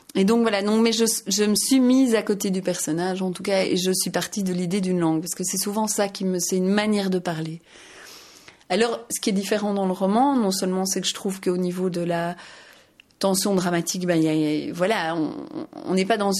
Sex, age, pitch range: female, 30-49, 180-210 Hz